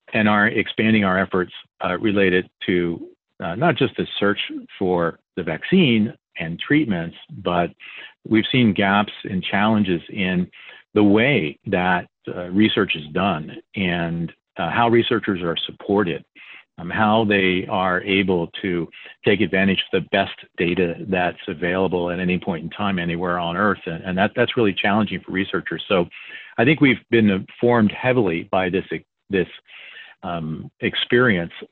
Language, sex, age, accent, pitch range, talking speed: English, male, 50-69, American, 90-105 Hz, 150 wpm